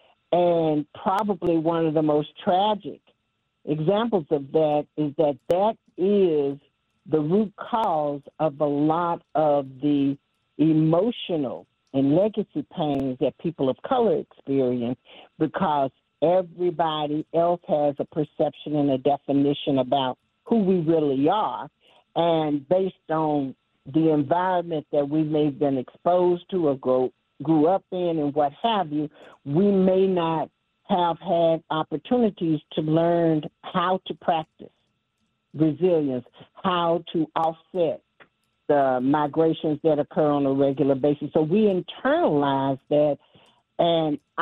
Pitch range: 145-175 Hz